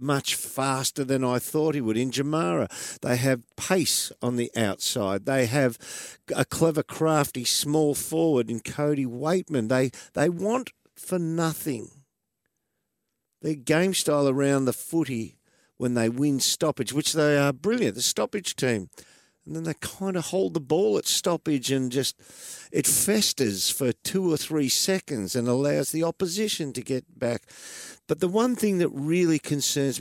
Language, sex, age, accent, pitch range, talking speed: English, male, 50-69, Australian, 115-155 Hz, 160 wpm